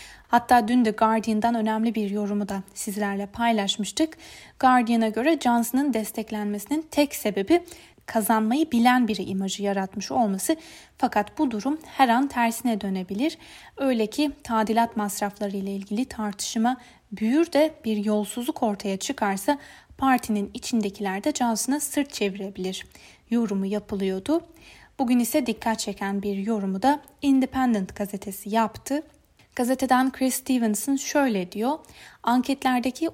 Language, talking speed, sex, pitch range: Turkish, 120 wpm, female, 205-260 Hz